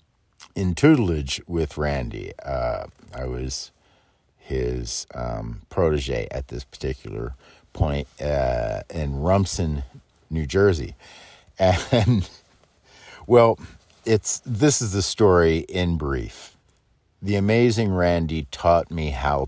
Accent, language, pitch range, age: American, English, 75-100 Hz, 50-69